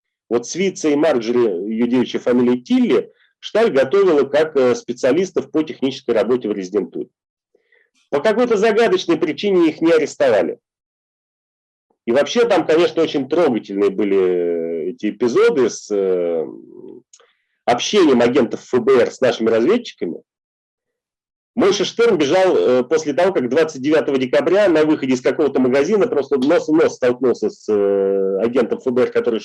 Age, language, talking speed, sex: 40-59, Russian, 125 wpm, male